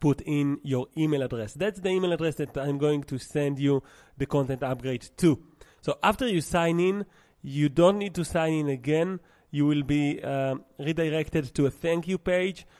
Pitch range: 130-165 Hz